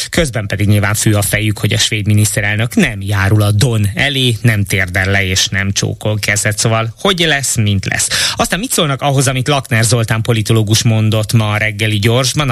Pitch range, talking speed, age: 110-130 Hz, 195 wpm, 20-39